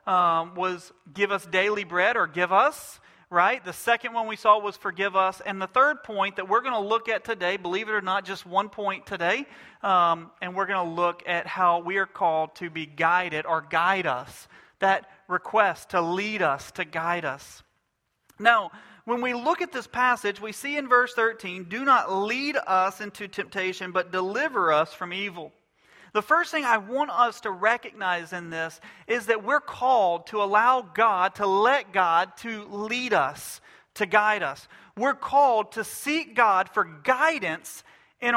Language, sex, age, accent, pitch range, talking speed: English, male, 40-59, American, 180-235 Hz, 185 wpm